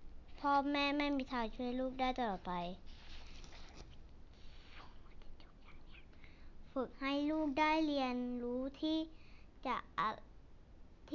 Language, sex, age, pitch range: Thai, male, 20-39, 220-275 Hz